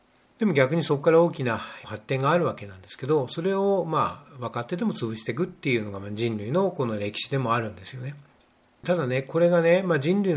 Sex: male